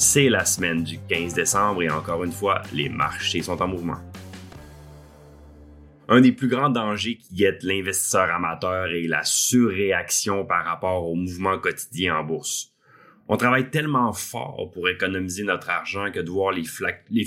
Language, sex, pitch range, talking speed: French, male, 90-130 Hz, 165 wpm